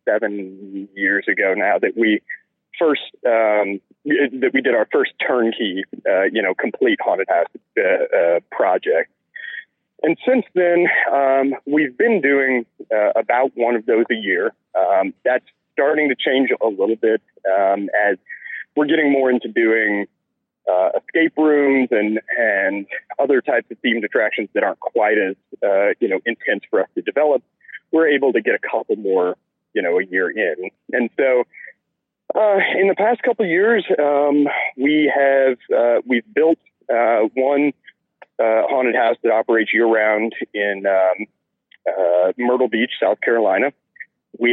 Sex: male